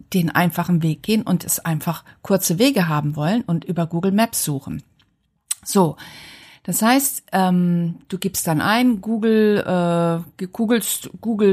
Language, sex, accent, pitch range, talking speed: German, female, German, 160-210 Hz, 145 wpm